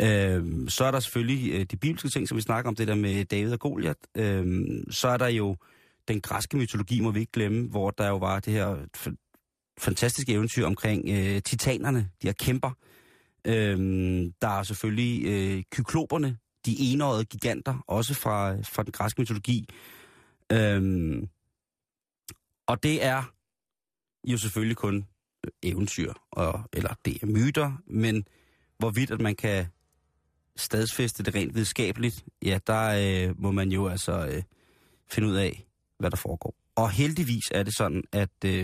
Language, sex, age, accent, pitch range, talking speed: Danish, male, 30-49, native, 95-115 Hz, 145 wpm